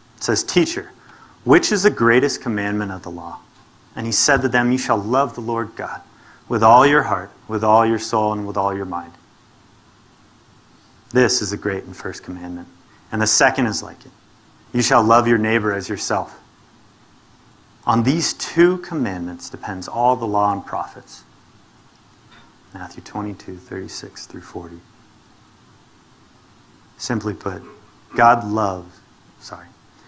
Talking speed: 150 wpm